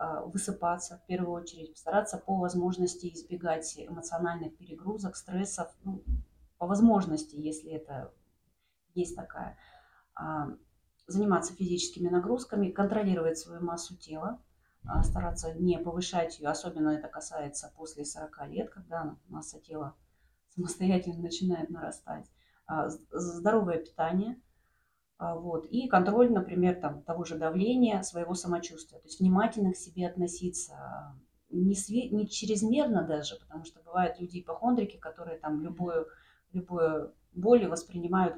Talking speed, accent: 110 wpm, native